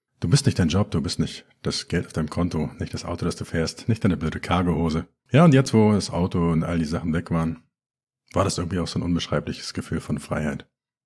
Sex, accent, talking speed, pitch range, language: male, German, 245 wpm, 80-115 Hz, German